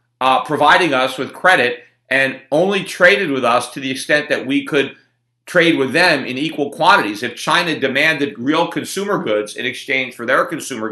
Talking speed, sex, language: 180 wpm, male, English